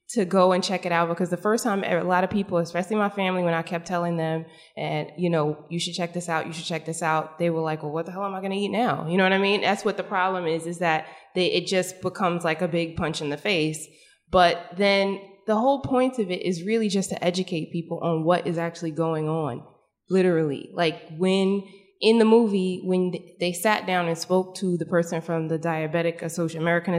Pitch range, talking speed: 165-185 Hz, 240 wpm